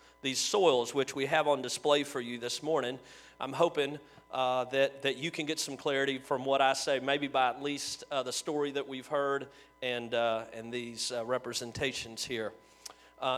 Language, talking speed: English, 195 wpm